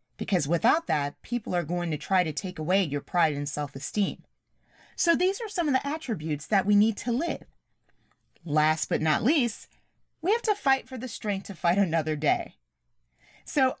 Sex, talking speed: female, 185 wpm